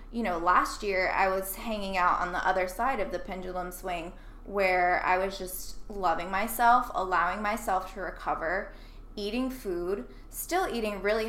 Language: English